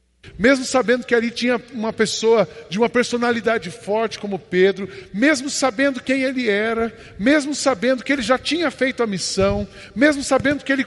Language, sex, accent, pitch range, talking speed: Portuguese, male, Brazilian, 200-250 Hz, 170 wpm